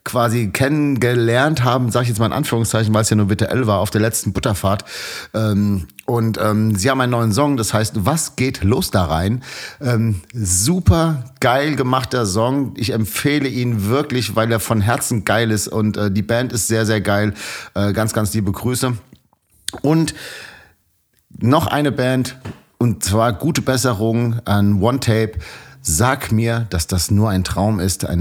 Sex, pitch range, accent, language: male, 100-120 Hz, German, German